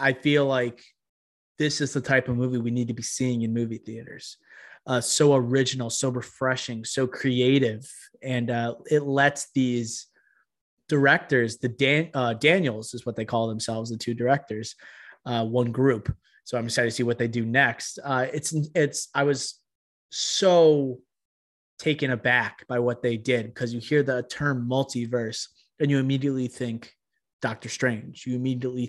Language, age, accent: English, 20-39, American